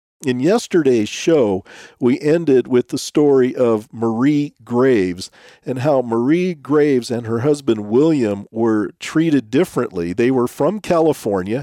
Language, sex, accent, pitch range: English, male, American, 110-145 Hz